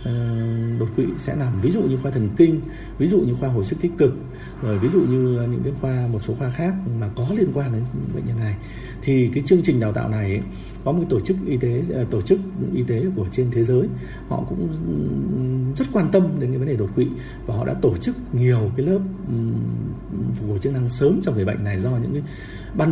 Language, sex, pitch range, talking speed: Vietnamese, male, 110-140 Hz, 240 wpm